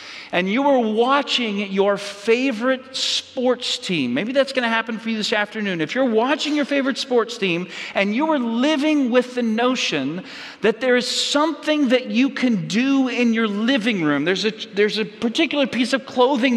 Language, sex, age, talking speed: English, male, 40-59, 180 wpm